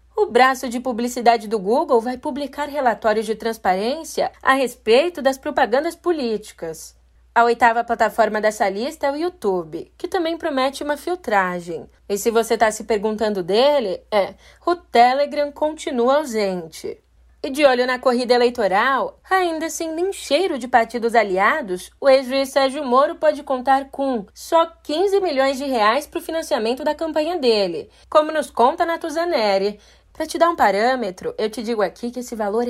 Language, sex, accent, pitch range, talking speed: Portuguese, female, Brazilian, 230-310 Hz, 160 wpm